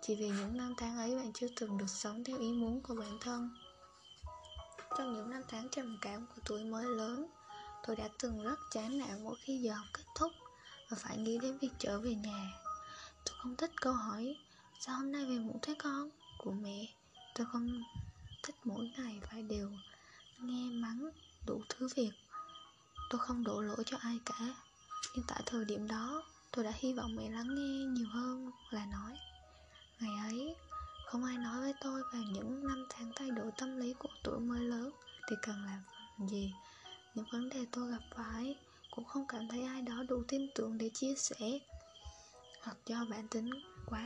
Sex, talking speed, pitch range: female, 195 wpm, 225-270 Hz